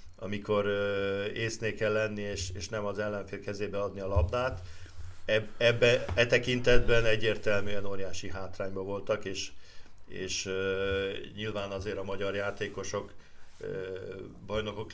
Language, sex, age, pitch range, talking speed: Hungarian, male, 50-69, 95-110 Hz, 110 wpm